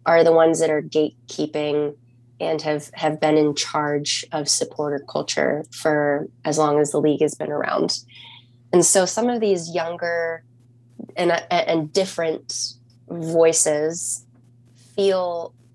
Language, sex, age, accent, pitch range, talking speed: English, female, 20-39, American, 125-165 Hz, 135 wpm